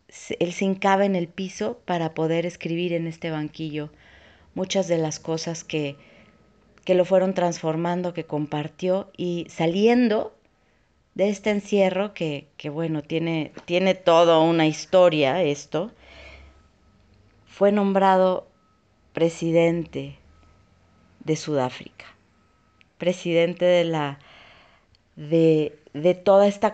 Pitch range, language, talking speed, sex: 145-185 Hz, Spanish, 110 wpm, female